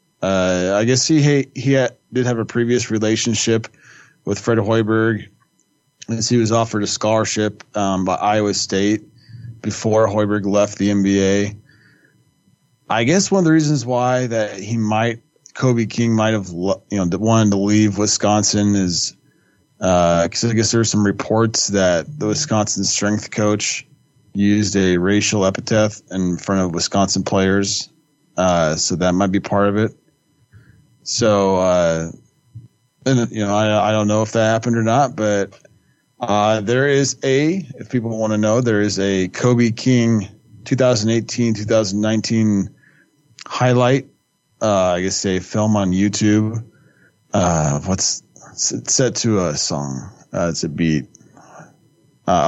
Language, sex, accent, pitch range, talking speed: English, male, American, 100-125 Hz, 150 wpm